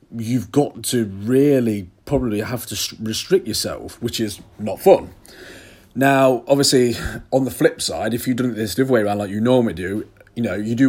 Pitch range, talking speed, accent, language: 105-130 Hz, 195 wpm, British, English